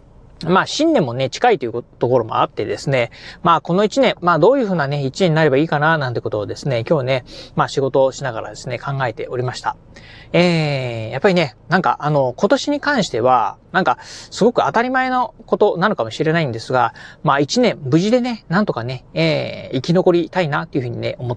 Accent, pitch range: native, 140-195 Hz